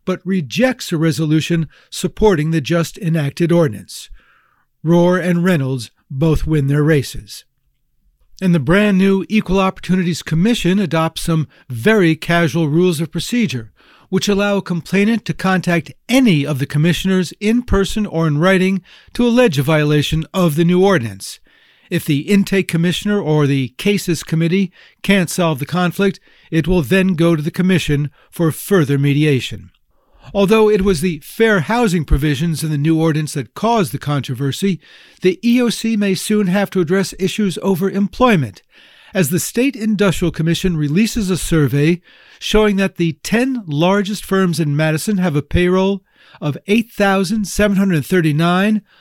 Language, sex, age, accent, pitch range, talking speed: English, male, 60-79, American, 160-195 Hz, 145 wpm